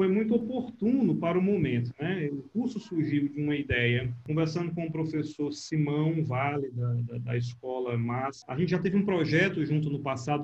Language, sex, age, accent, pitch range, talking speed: Portuguese, male, 40-59, Brazilian, 145-190 Hz, 185 wpm